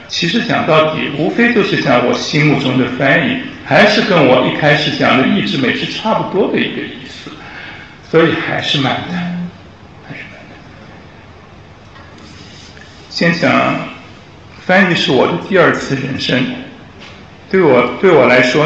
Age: 60-79